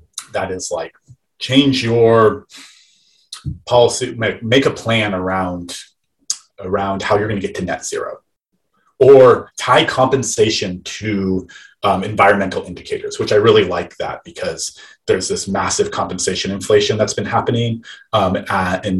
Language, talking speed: English, 135 wpm